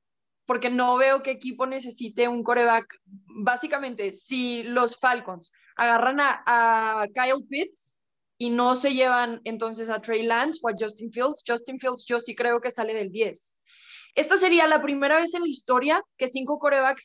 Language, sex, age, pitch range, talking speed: English, female, 20-39, 225-265 Hz, 175 wpm